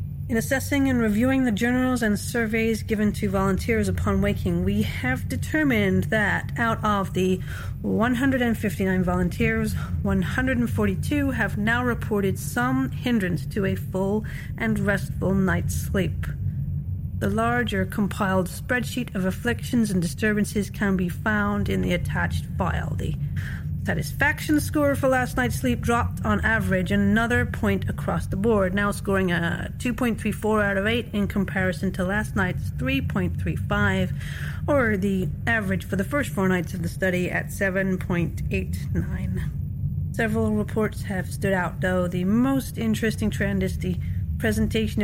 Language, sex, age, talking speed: English, female, 40-59, 135 wpm